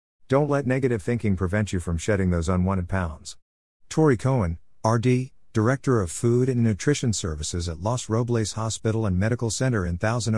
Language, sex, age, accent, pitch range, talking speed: English, male, 50-69, American, 90-120 Hz, 170 wpm